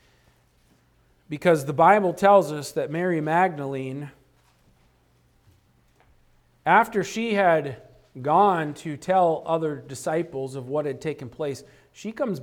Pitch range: 145-185 Hz